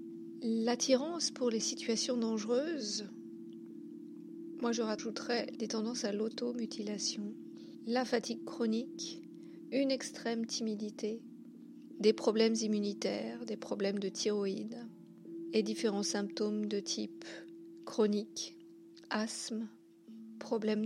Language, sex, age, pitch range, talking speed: French, female, 50-69, 180-245 Hz, 95 wpm